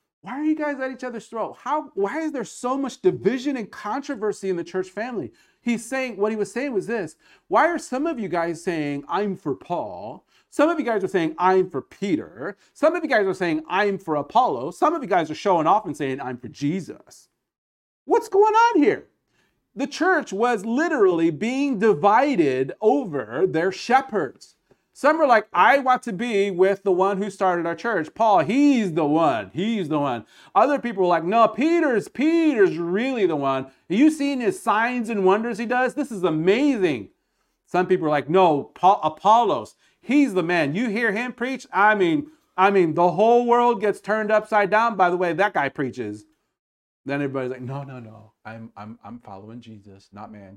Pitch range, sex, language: 165-260 Hz, male, Japanese